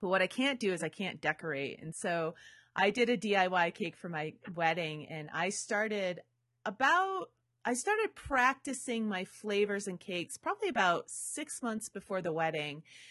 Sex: female